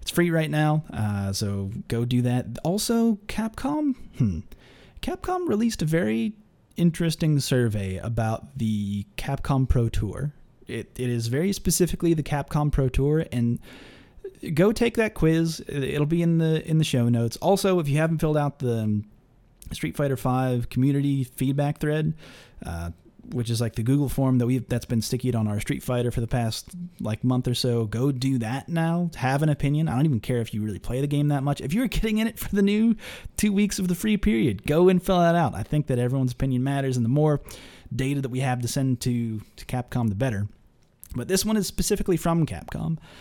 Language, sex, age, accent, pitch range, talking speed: English, male, 30-49, American, 120-170 Hz, 205 wpm